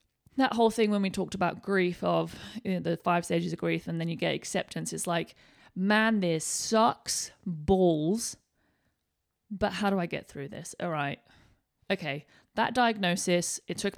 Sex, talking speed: female, 175 wpm